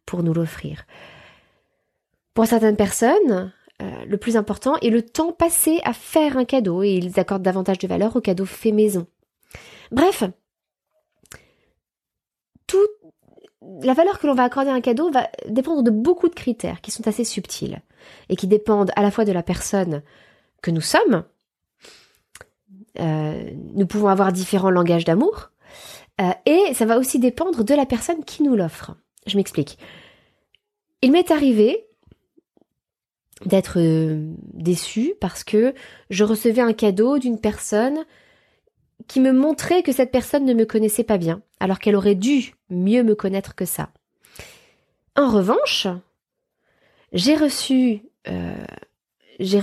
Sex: female